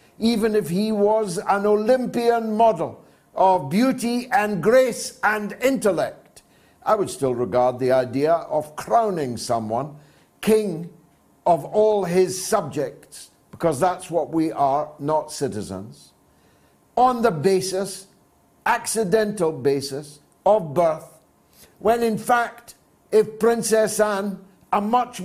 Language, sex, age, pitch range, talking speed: English, male, 60-79, 145-215 Hz, 115 wpm